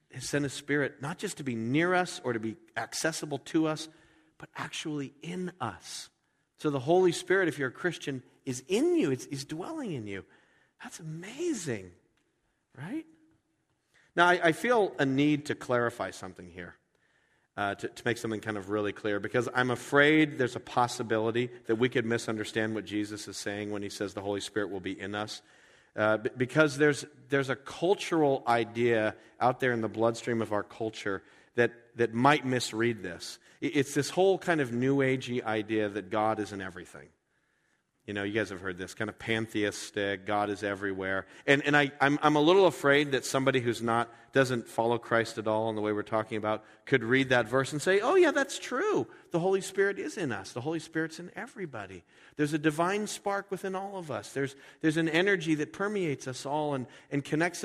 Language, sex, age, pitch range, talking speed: English, male, 40-59, 110-155 Hz, 200 wpm